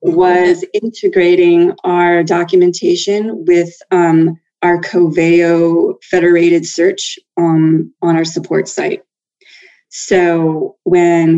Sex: female